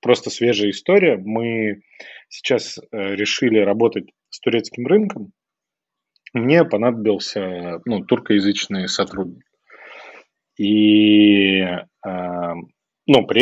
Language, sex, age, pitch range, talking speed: Russian, male, 20-39, 100-120 Hz, 80 wpm